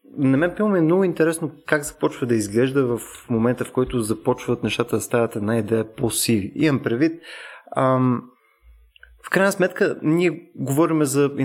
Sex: male